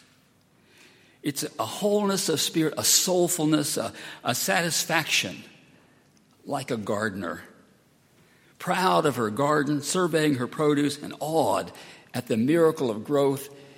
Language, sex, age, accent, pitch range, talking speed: English, male, 60-79, American, 135-165 Hz, 120 wpm